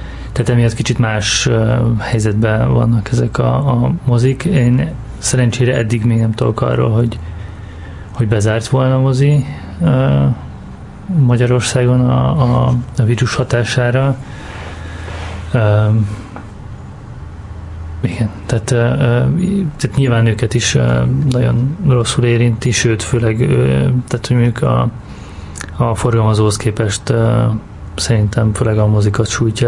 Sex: male